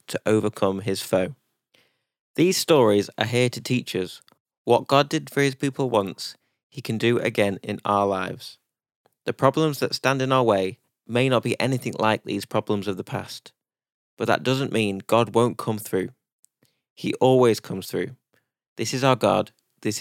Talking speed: 175 wpm